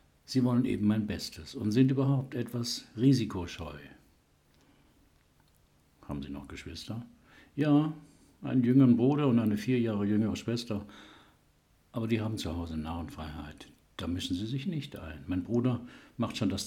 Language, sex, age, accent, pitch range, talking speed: German, male, 60-79, German, 90-125 Hz, 150 wpm